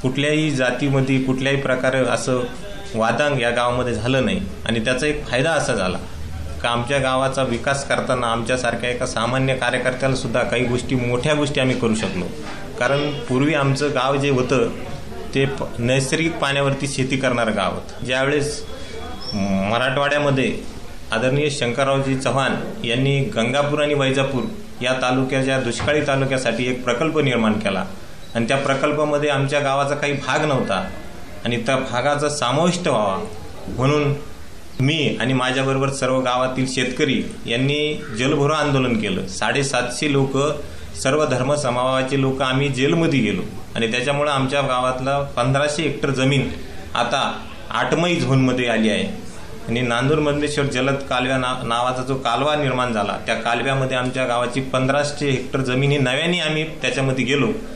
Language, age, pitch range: Marathi, 30-49, 120-140 Hz